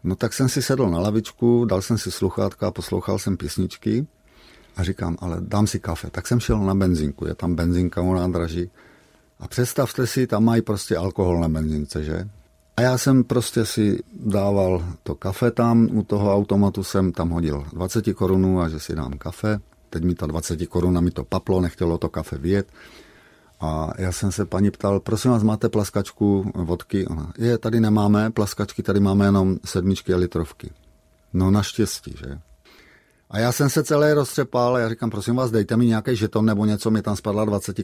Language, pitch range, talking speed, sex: Czech, 90-110 Hz, 190 wpm, male